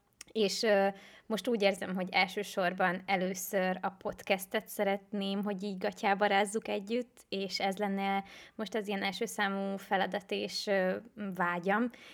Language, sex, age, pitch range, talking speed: Hungarian, female, 20-39, 190-220 Hz, 130 wpm